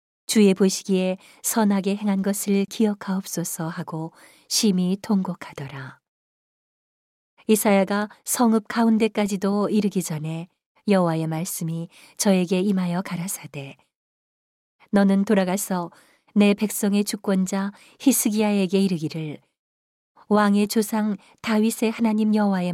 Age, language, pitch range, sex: 40-59, Korean, 170-210 Hz, female